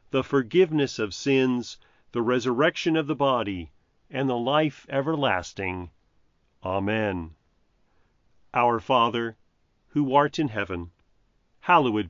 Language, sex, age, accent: English, male, 40-59, American